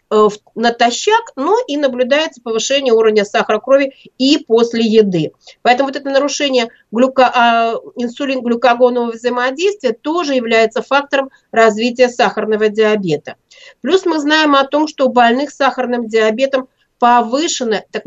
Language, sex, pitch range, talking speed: Russian, female, 220-265 Hz, 125 wpm